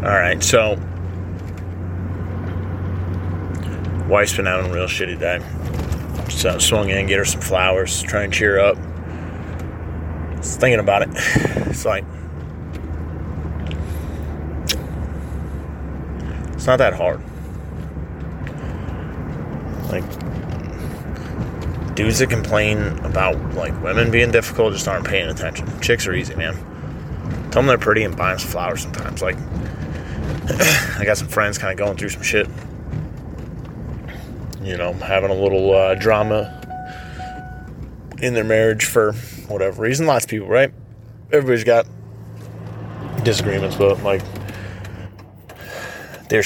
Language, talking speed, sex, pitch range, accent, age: English, 120 wpm, male, 80-105 Hz, American, 30-49